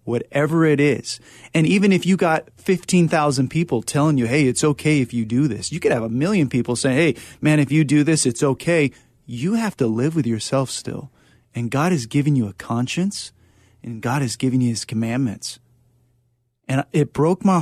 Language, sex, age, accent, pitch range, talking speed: English, male, 30-49, American, 120-150 Hz, 205 wpm